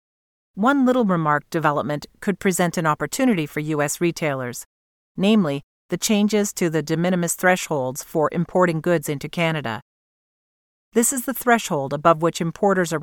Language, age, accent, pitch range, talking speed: English, 40-59, American, 150-190 Hz, 145 wpm